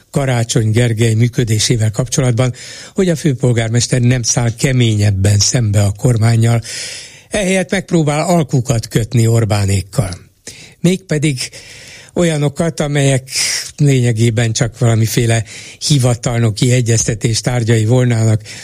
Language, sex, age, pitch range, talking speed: Hungarian, male, 60-79, 115-140 Hz, 85 wpm